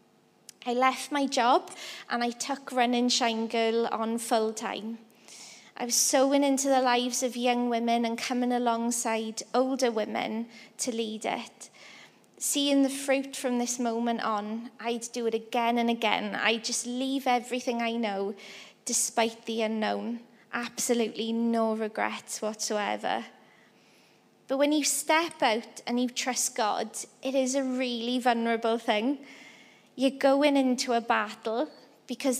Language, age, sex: English, 20-39, female